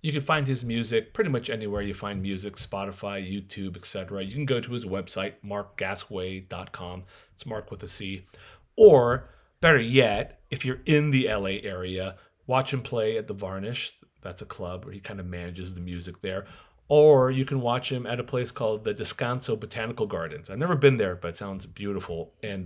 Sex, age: male, 30-49